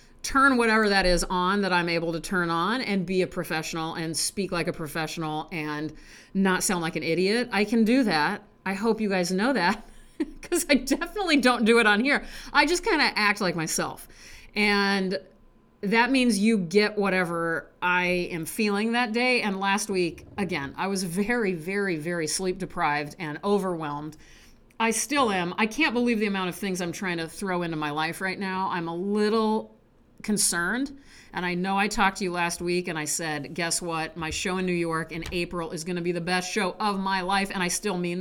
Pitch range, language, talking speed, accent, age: 165-210 Hz, English, 210 wpm, American, 40-59